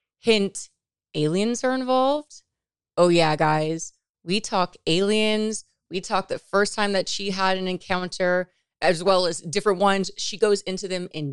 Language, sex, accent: English, female, American